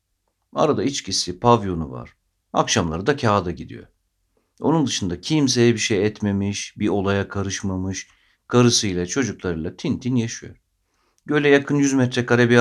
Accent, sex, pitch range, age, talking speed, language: native, male, 90-125 Hz, 50-69, 130 wpm, Turkish